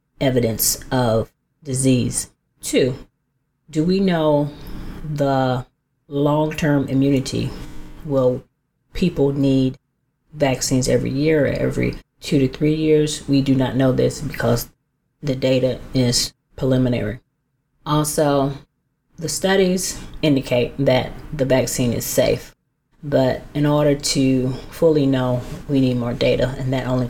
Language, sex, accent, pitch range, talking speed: English, female, American, 125-150 Hz, 120 wpm